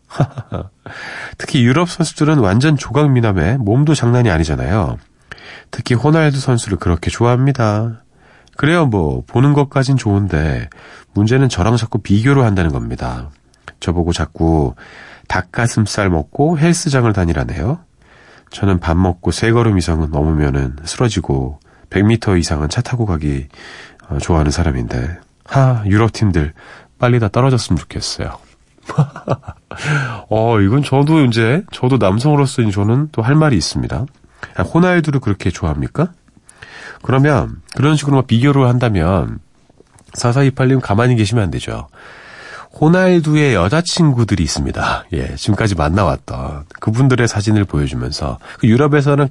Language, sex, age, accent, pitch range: Korean, male, 40-59, native, 90-135 Hz